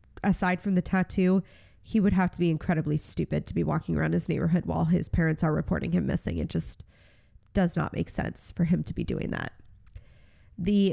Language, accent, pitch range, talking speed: English, American, 155-195 Hz, 205 wpm